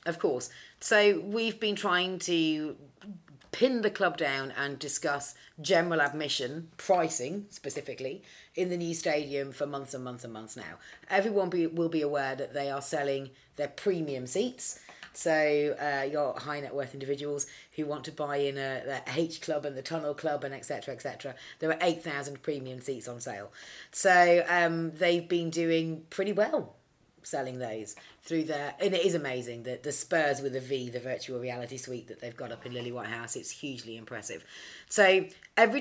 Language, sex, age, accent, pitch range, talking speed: English, female, 30-49, British, 135-170 Hz, 185 wpm